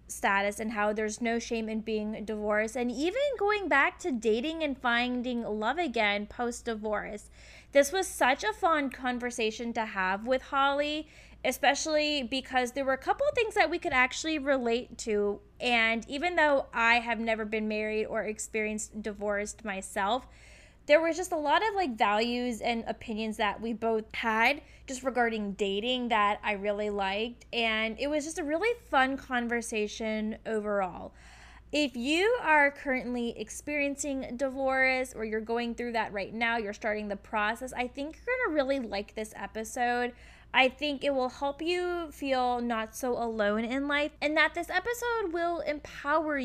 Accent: American